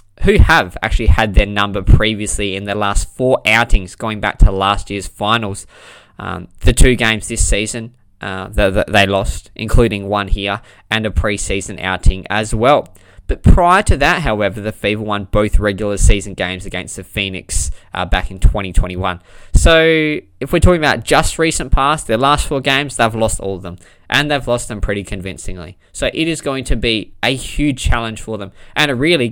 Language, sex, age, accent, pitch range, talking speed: English, male, 20-39, Australian, 100-130 Hz, 190 wpm